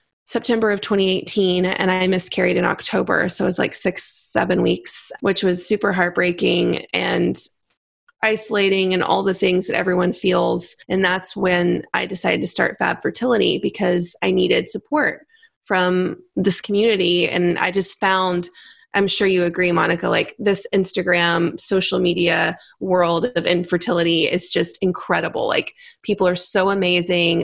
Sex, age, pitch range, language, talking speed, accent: female, 20-39, 180-210 Hz, English, 150 wpm, American